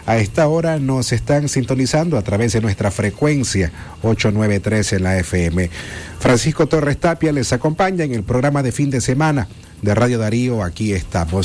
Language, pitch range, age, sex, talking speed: Spanish, 95-145 Hz, 30-49, male, 170 wpm